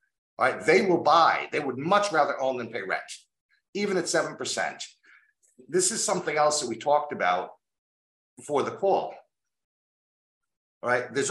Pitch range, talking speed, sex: 125-195 Hz, 160 wpm, male